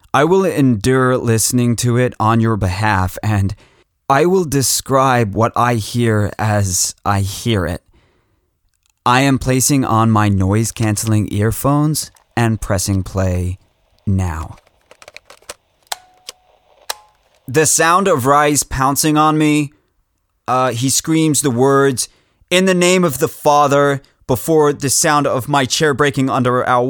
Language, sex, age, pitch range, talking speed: English, male, 20-39, 115-155 Hz, 130 wpm